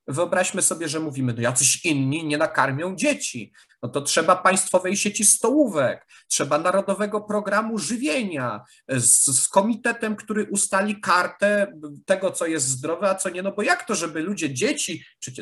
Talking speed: 160 wpm